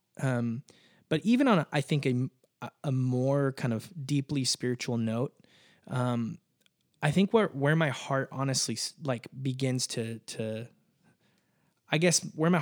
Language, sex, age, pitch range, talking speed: English, male, 20-39, 120-150 Hz, 145 wpm